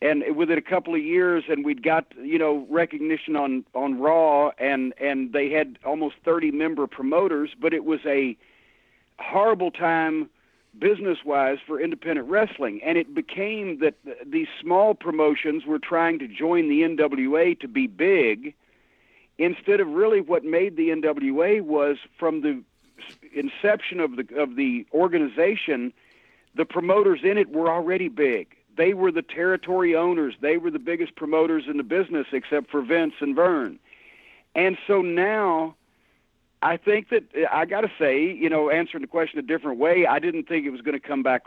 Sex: male